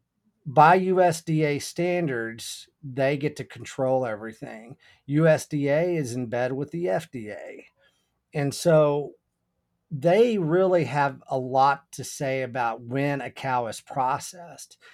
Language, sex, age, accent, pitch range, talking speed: English, male, 40-59, American, 120-150 Hz, 120 wpm